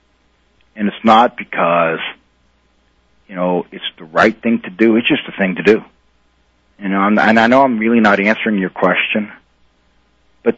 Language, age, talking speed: English, 40-59, 170 wpm